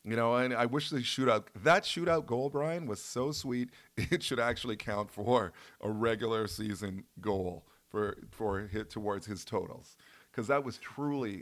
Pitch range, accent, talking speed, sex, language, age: 100-125 Hz, American, 180 wpm, male, English, 40-59